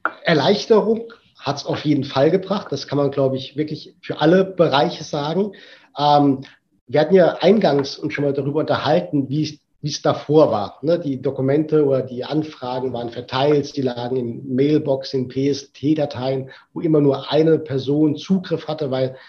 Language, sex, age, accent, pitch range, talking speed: German, male, 50-69, German, 130-155 Hz, 165 wpm